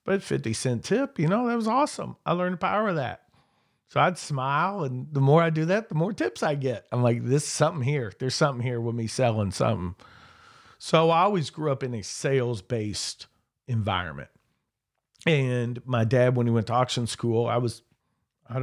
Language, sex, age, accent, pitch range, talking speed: English, male, 40-59, American, 115-160 Hz, 205 wpm